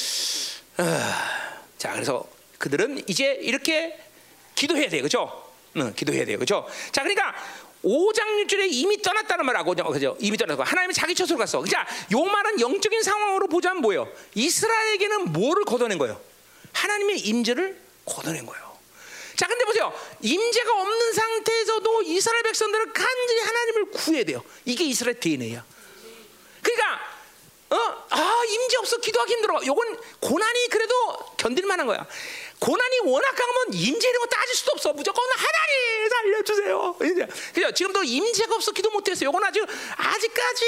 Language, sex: Korean, male